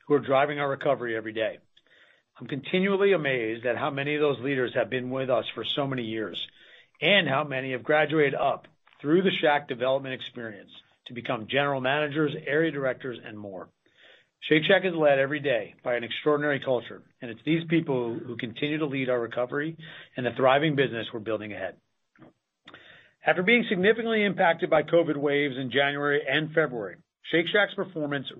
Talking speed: 175 wpm